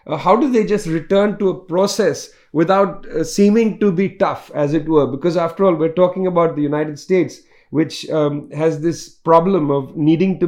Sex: male